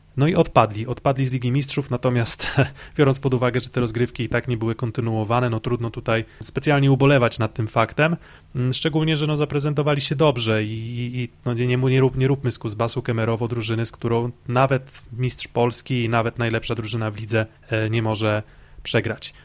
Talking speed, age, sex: 180 wpm, 20-39, male